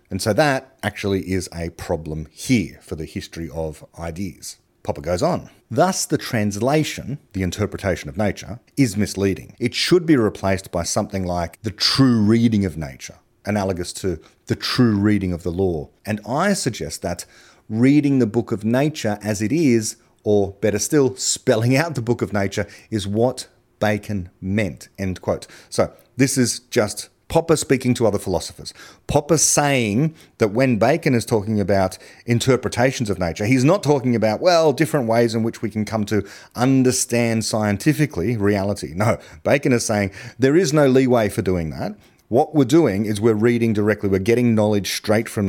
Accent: Australian